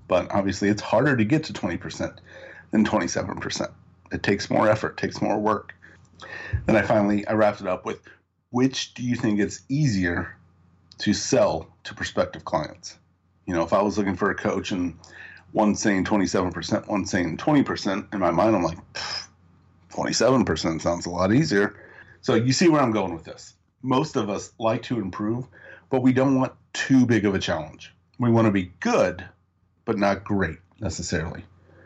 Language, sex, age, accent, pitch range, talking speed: English, male, 40-59, American, 90-110 Hz, 175 wpm